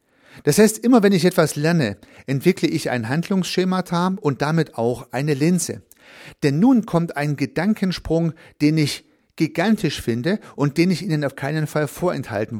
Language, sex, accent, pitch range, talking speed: German, male, German, 130-170 Hz, 155 wpm